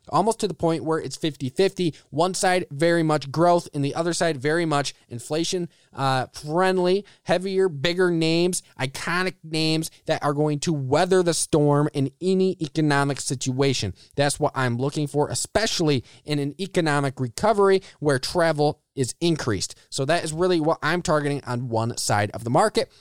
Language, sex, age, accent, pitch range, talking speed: English, male, 20-39, American, 140-175 Hz, 165 wpm